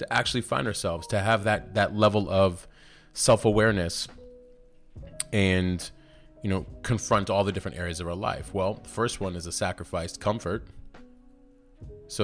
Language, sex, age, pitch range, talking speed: English, male, 20-39, 90-110 Hz, 150 wpm